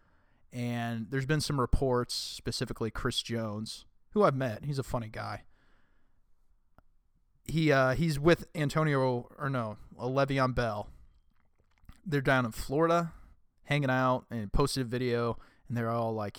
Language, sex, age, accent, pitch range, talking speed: English, male, 20-39, American, 110-145 Hz, 140 wpm